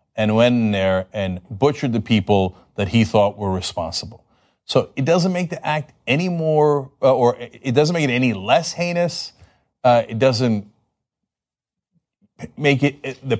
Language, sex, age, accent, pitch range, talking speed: English, male, 40-59, American, 130-220 Hz, 155 wpm